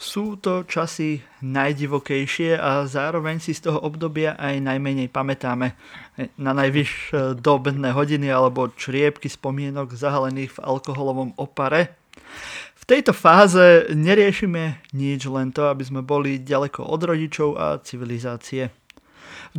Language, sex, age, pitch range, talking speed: Slovak, male, 30-49, 135-175 Hz, 125 wpm